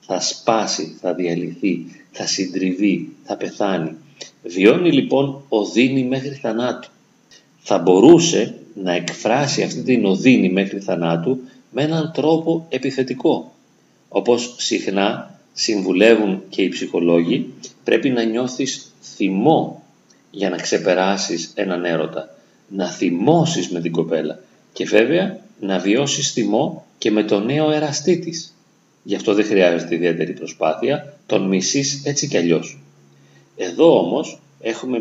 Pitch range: 85-135 Hz